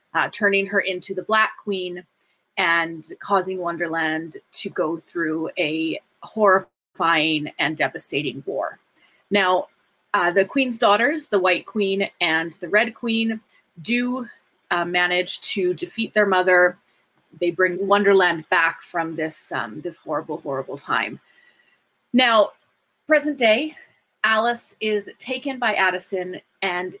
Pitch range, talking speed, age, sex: 185-255 Hz, 125 wpm, 30-49, female